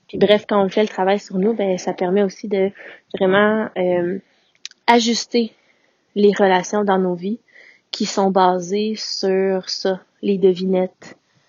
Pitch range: 185-225 Hz